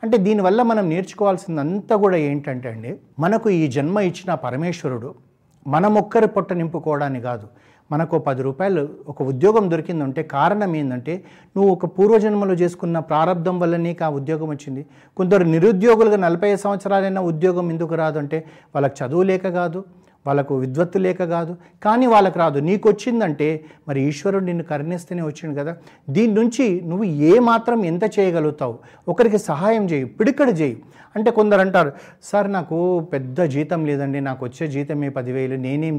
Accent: native